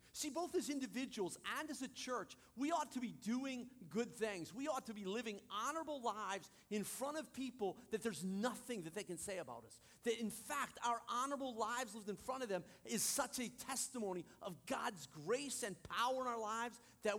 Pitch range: 210-270 Hz